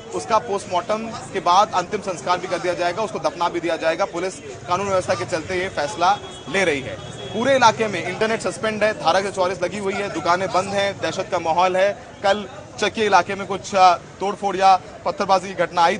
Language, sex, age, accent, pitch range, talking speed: Hindi, male, 30-49, native, 175-200 Hz, 205 wpm